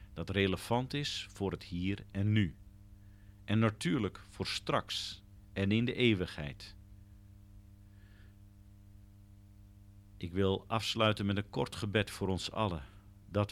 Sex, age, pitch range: male, 50-69, 95-110 Hz